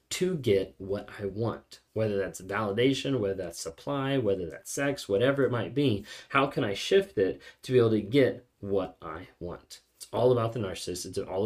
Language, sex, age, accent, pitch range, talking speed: English, male, 20-39, American, 100-130 Hz, 200 wpm